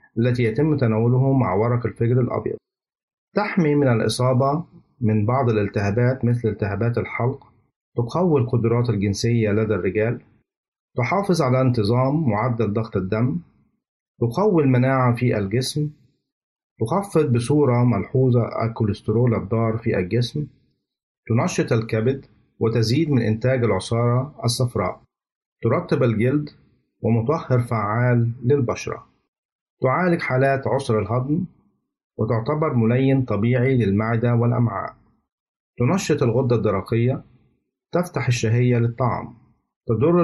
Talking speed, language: 100 wpm, Arabic